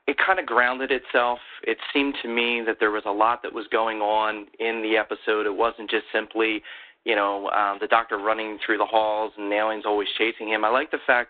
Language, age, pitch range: English, 30-49, 110-125 Hz